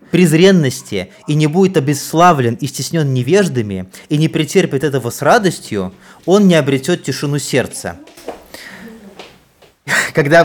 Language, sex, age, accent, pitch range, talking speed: Russian, male, 20-39, native, 135-175 Hz, 115 wpm